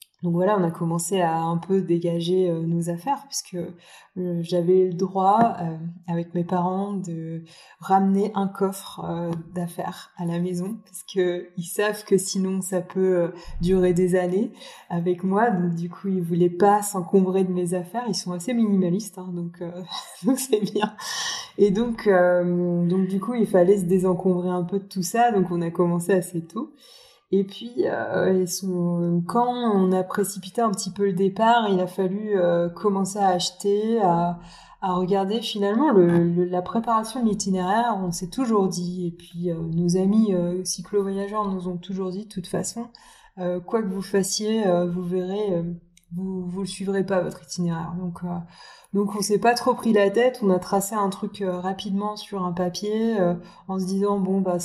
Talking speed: 195 wpm